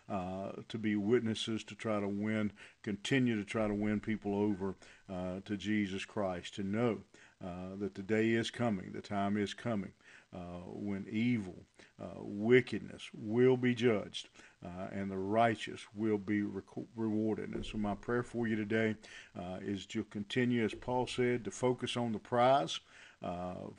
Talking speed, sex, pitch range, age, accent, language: 165 wpm, male, 100-115 Hz, 50-69, American, English